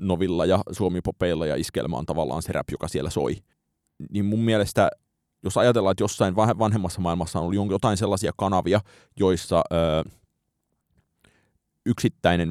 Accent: native